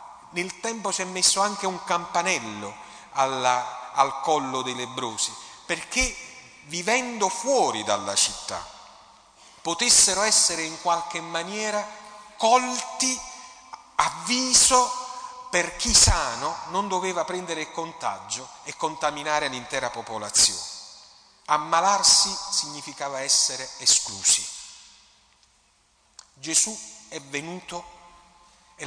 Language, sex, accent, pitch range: Italian, male, native, 145-210 Hz